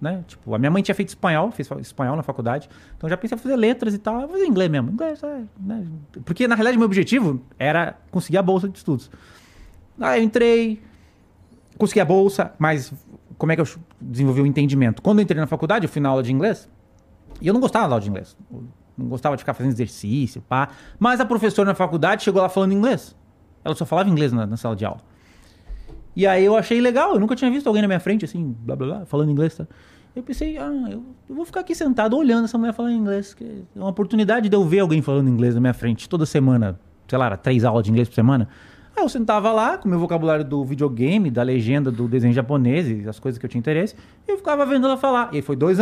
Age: 30-49